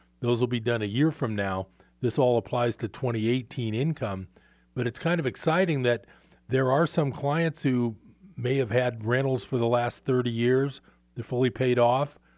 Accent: American